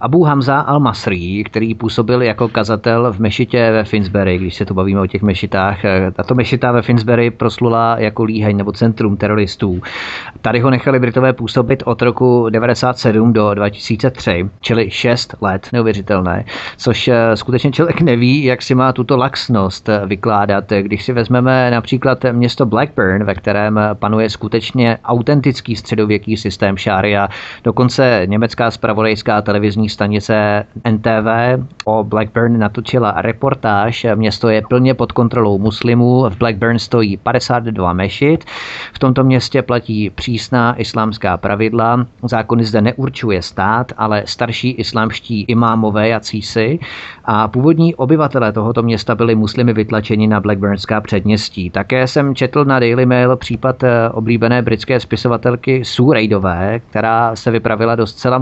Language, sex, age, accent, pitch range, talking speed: Czech, male, 30-49, native, 105-125 Hz, 135 wpm